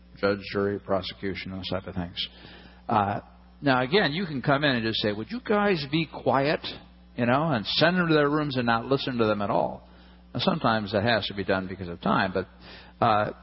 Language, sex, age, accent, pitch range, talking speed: English, male, 50-69, American, 100-140 Hz, 220 wpm